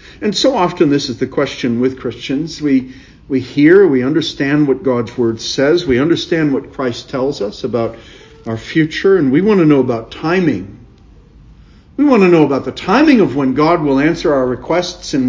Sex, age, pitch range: male, 50-69, 115-160 Hz